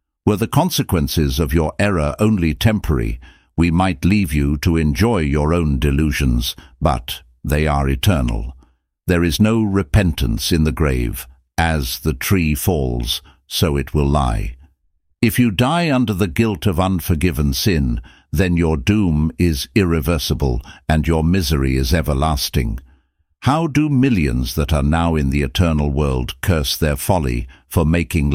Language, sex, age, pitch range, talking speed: English, male, 60-79, 70-90 Hz, 150 wpm